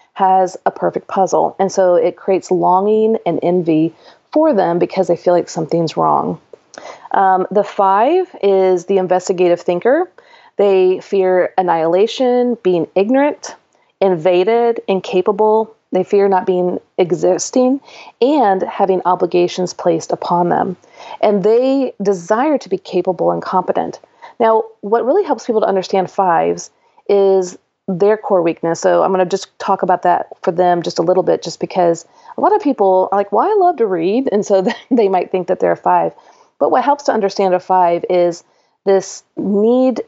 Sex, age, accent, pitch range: female, 30-49, American, 180-215 Hz